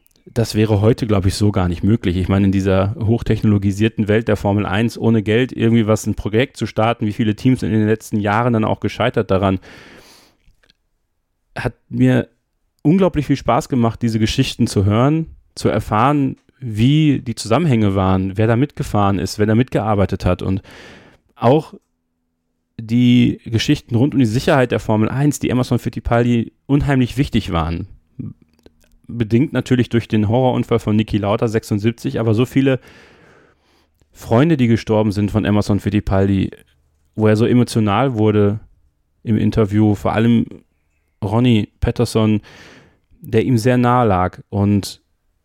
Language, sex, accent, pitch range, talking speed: German, male, German, 100-120 Hz, 150 wpm